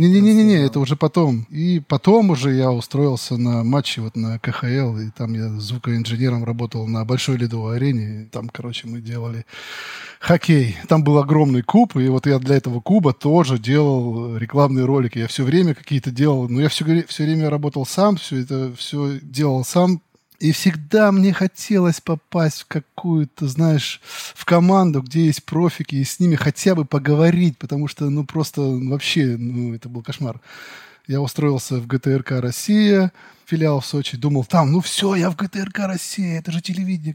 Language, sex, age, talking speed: Russian, male, 20-39, 175 wpm